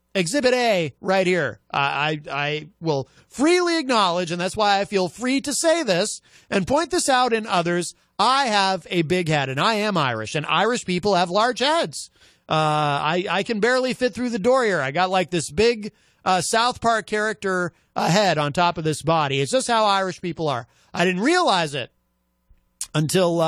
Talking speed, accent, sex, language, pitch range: 195 wpm, American, male, English, 155-235 Hz